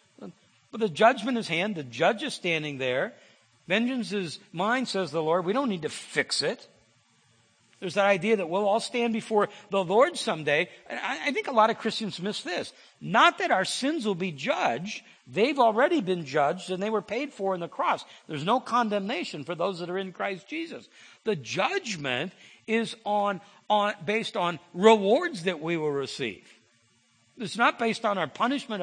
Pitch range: 170-230 Hz